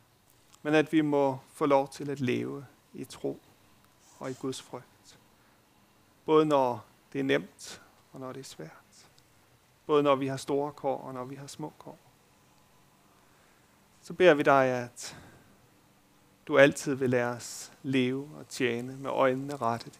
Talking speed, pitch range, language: 160 wpm, 120-145 Hz, Danish